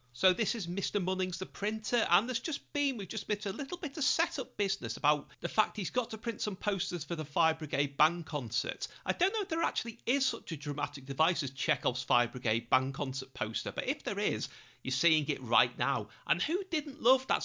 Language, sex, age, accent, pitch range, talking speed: English, male, 40-59, British, 145-230 Hz, 230 wpm